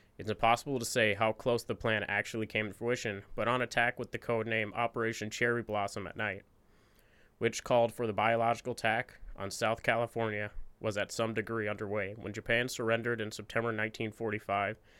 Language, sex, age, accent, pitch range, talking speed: English, male, 20-39, American, 105-115 Hz, 170 wpm